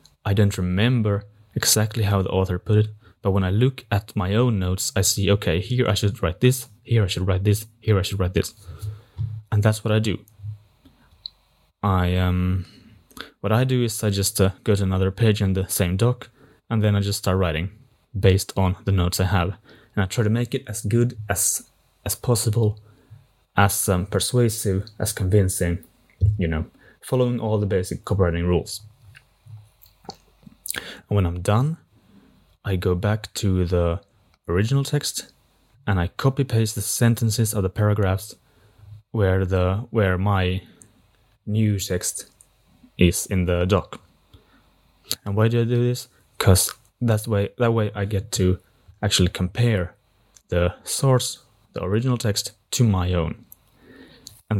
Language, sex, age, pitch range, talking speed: English, male, 20-39, 95-115 Hz, 165 wpm